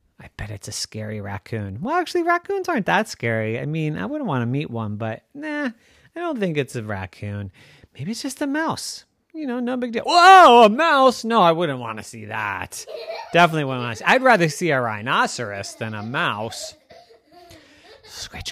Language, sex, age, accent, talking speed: English, male, 30-49, American, 200 wpm